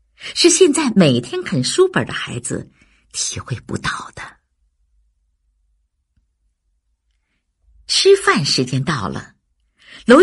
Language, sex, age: Chinese, female, 50-69